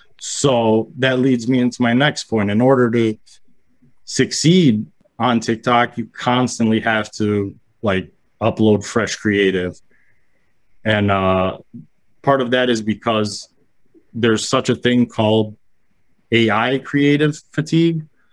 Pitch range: 110-125 Hz